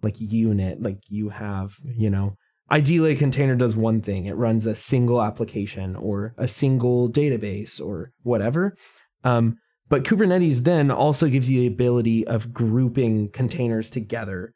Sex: male